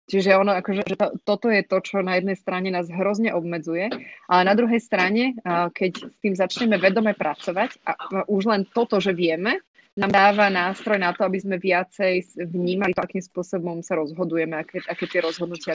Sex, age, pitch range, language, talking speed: female, 30-49, 175-210 Hz, Slovak, 180 wpm